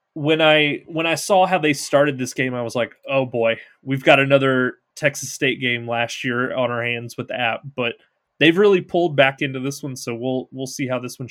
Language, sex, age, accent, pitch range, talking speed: English, male, 20-39, American, 125-150 Hz, 235 wpm